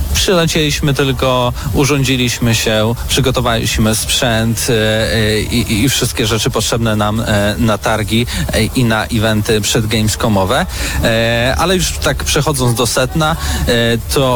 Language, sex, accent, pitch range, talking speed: Polish, male, native, 110-130 Hz, 105 wpm